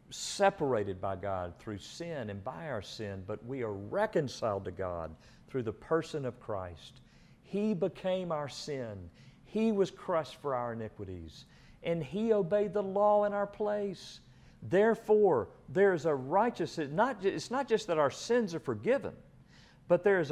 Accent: American